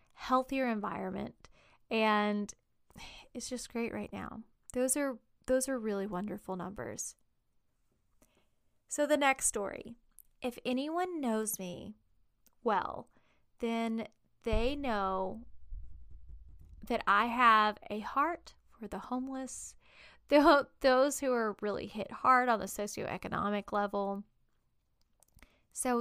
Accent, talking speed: American, 105 wpm